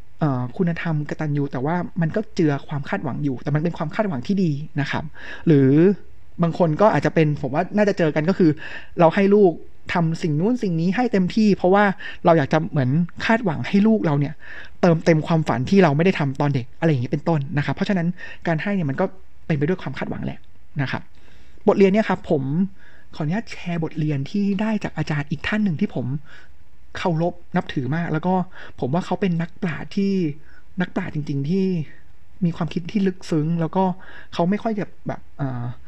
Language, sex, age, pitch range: Thai, male, 20-39, 145-190 Hz